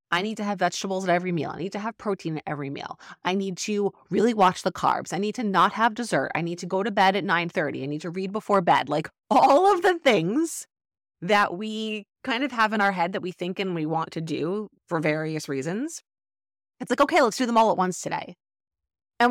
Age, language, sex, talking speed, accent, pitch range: 30-49, English, female, 240 wpm, American, 155-210 Hz